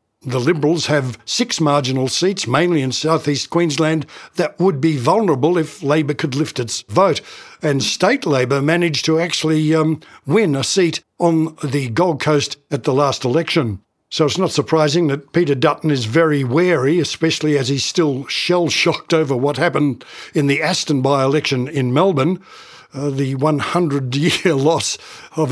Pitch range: 140-175 Hz